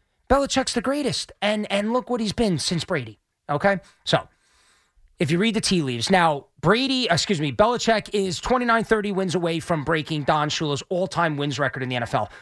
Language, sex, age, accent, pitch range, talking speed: English, male, 30-49, American, 145-200 Hz, 195 wpm